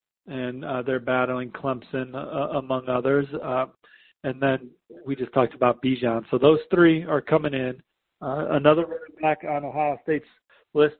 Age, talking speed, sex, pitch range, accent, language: 40-59, 165 wpm, male, 130-150 Hz, American, English